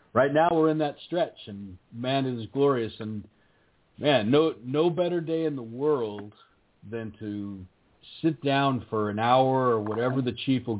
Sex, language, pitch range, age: male, English, 105-125 Hz, 50-69